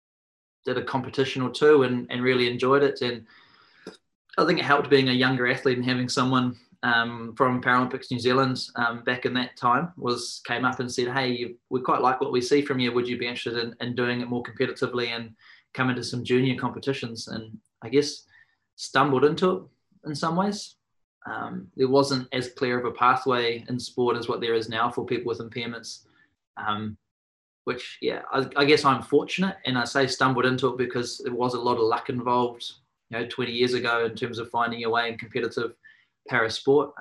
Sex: male